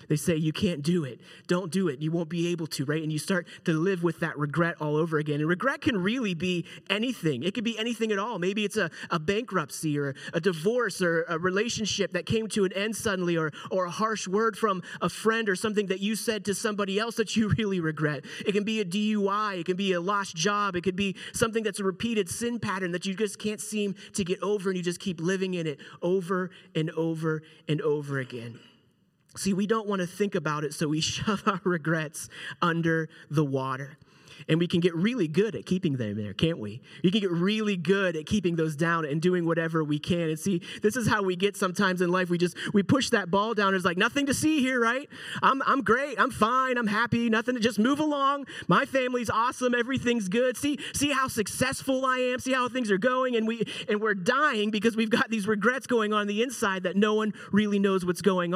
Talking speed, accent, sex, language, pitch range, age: 240 wpm, American, male, English, 170-220 Hz, 30-49